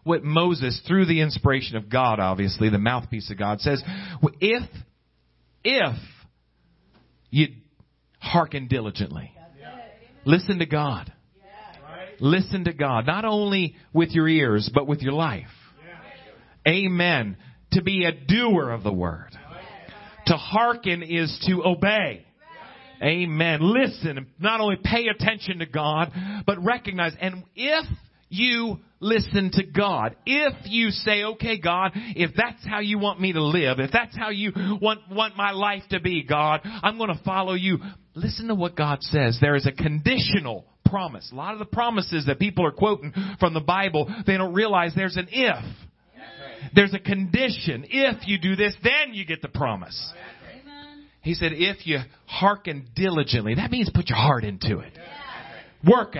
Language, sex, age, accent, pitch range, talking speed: English, male, 40-59, American, 145-200 Hz, 155 wpm